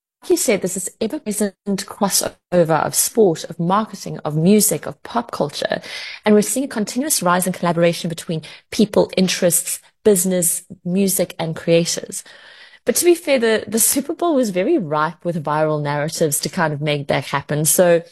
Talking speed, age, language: 170 wpm, 30-49, English